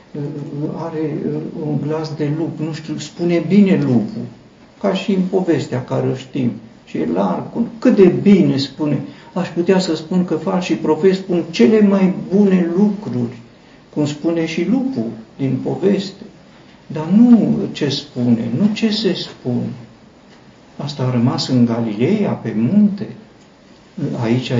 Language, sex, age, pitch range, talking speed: Romanian, male, 60-79, 115-165 Hz, 145 wpm